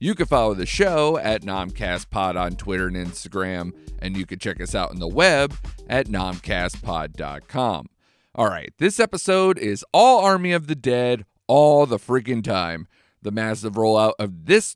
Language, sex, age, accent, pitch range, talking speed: English, male, 40-59, American, 100-135 Hz, 165 wpm